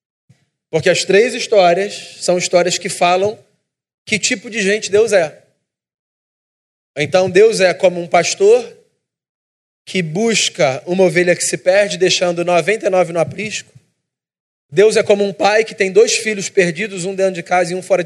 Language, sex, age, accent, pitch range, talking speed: Portuguese, male, 20-39, Brazilian, 150-185 Hz, 160 wpm